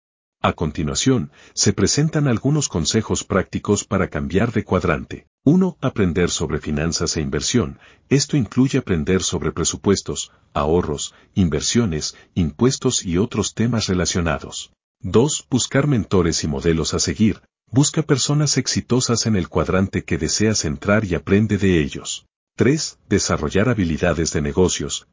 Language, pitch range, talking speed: Spanish, 85-115 Hz, 130 wpm